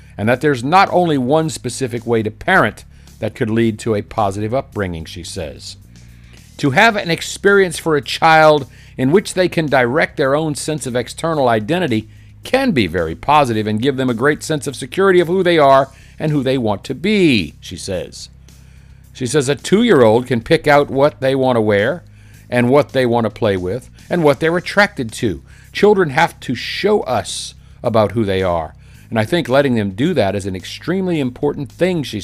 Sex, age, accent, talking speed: male, 50-69, American, 200 wpm